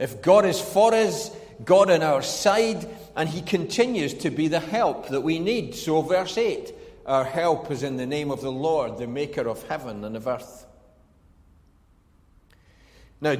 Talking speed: 175 wpm